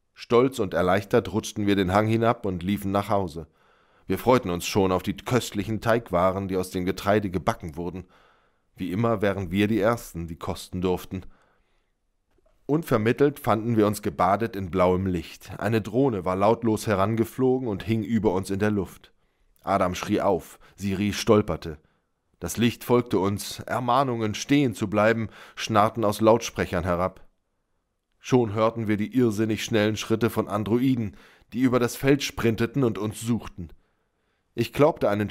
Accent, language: German, German